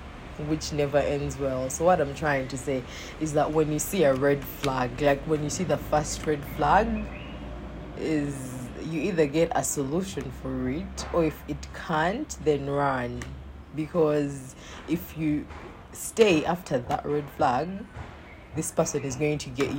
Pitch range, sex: 135-155 Hz, female